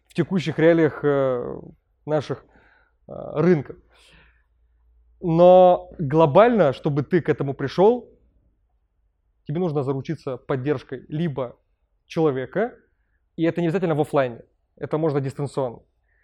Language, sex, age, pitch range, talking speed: Russian, male, 20-39, 135-170 Hz, 100 wpm